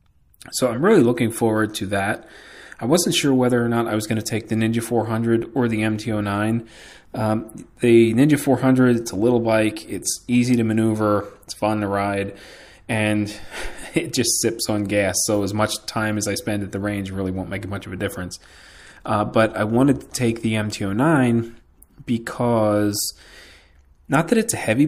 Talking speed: 185 wpm